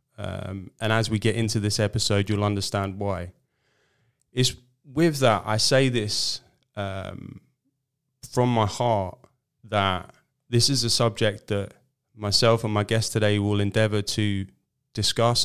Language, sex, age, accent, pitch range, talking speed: English, male, 20-39, British, 105-120 Hz, 140 wpm